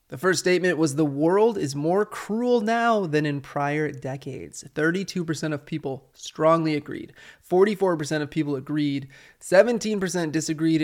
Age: 20-39